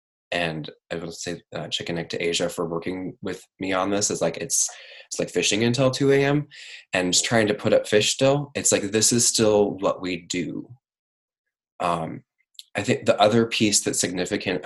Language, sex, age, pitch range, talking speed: English, male, 20-39, 85-105 Hz, 190 wpm